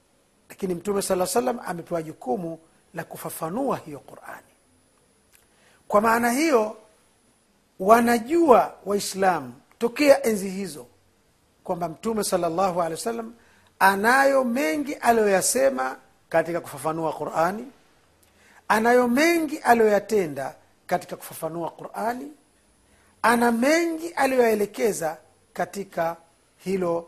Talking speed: 90 wpm